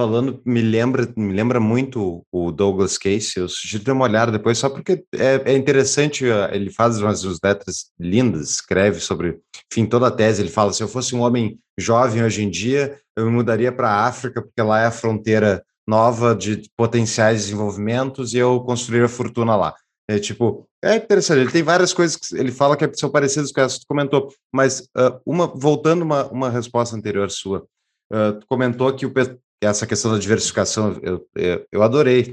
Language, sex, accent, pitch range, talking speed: Portuguese, male, Brazilian, 105-125 Hz, 200 wpm